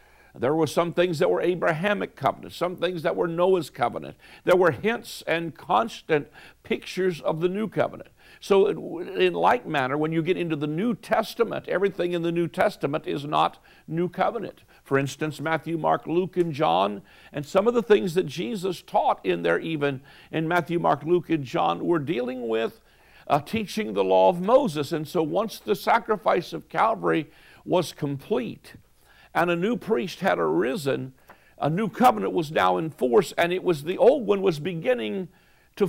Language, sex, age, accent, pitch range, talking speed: English, male, 60-79, American, 160-210 Hz, 180 wpm